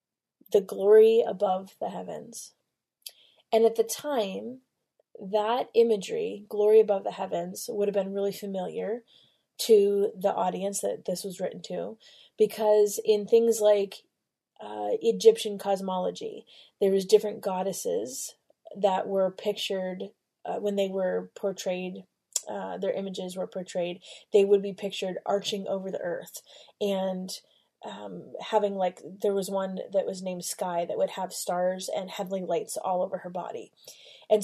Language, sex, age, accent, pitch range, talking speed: English, female, 20-39, American, 190-220 Hz, 145 wpm